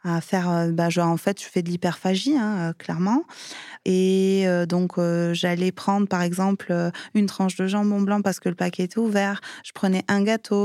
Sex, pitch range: female, 175-205 Hz